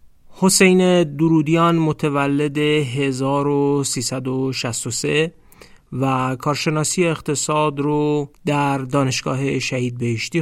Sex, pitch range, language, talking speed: male, 130-150 Hz, Persian, 70 wpm